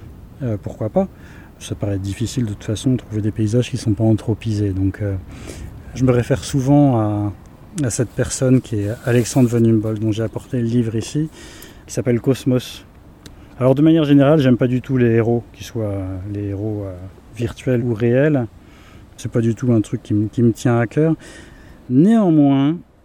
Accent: French